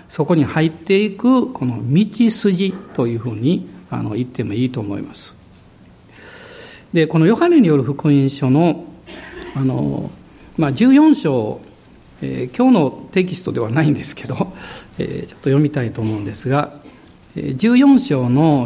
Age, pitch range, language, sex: 60-79, 135-205 Hz, Japanese, male